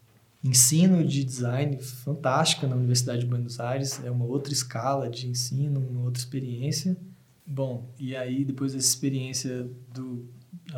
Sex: male